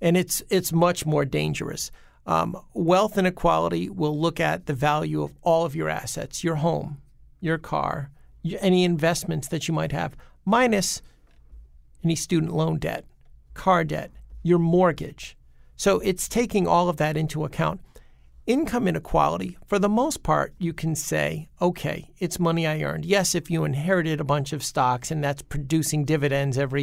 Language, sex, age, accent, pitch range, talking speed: English, male, 50-69, American, 130-175 Hz, 165 wpm